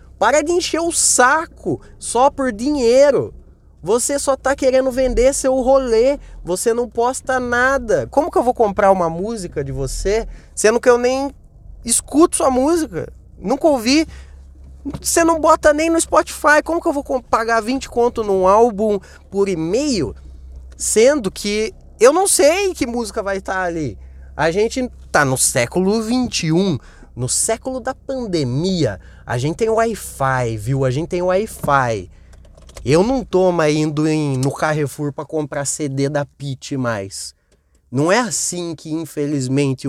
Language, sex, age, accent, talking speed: Portuguese, male, 20-39, Brazilian, 150 wpm